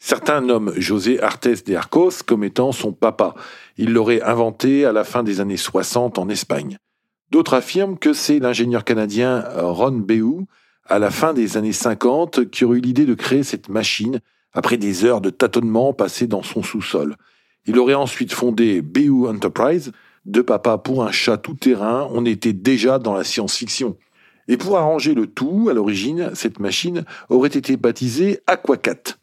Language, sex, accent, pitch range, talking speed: French, male, French, 110-135 Hz, 170 wpm